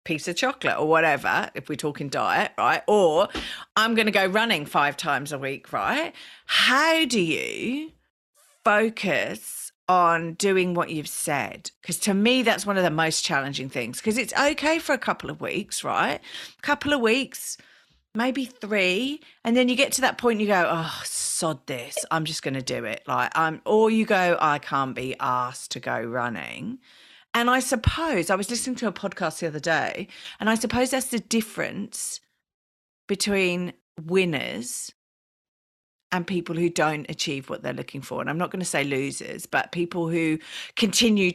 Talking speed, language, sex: 185 wpm, English, female